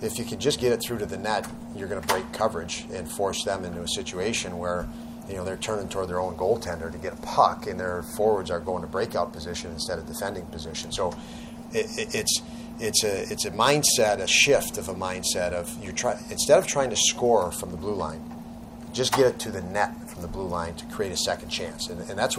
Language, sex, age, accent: English, male, 40-59, American